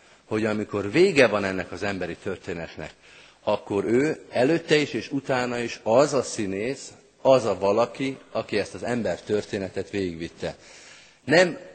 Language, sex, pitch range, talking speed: Hungarian, male, 95-125 Hz, 140 wpm